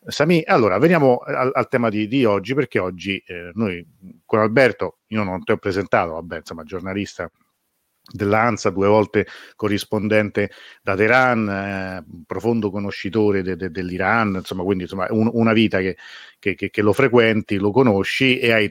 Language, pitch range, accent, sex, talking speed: Italian, 95-115 Hz, native, male, 165 wpm